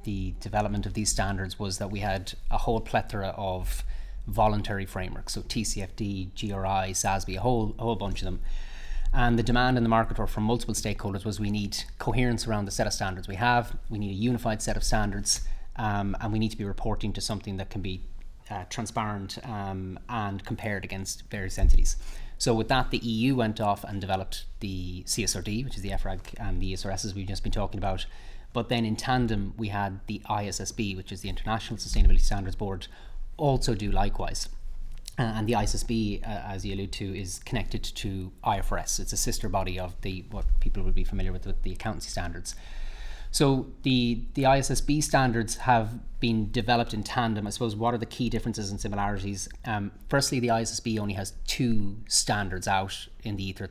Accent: Irish